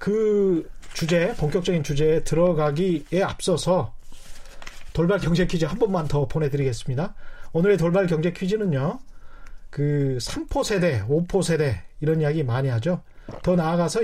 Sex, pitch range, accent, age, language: male, 150-200 Hz, native, 30-49, Korean